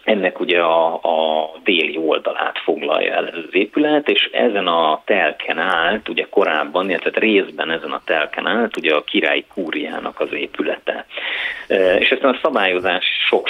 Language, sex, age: Hungarian, male, 30-49